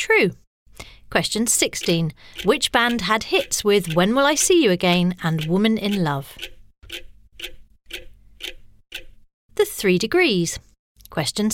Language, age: English, 40-59